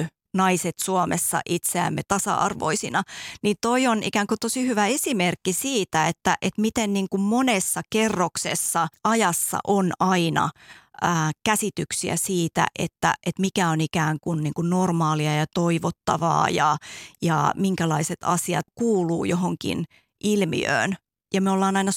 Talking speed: 130 wpm